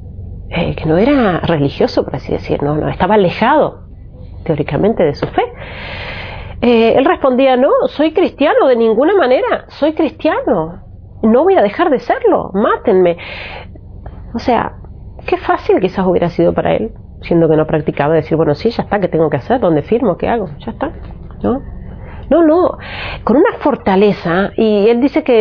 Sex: female